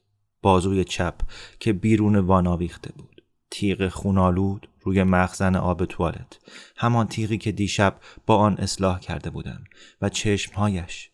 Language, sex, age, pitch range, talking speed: Persian, male, 30-49, 95-105 Hz, 125 wpm